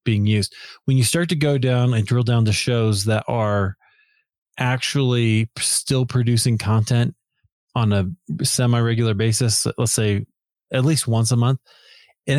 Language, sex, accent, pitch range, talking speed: English, male, American, 110-130 Hz, 150 wpm